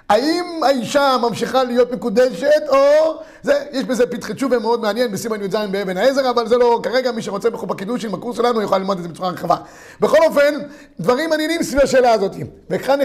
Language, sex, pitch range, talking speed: Hebrew, male, 215-260 Hz, 190 wpm